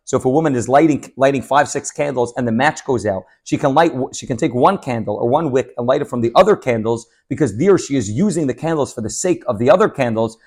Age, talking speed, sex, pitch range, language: 30-49, 270 wpm, male, 125-160 Hz, English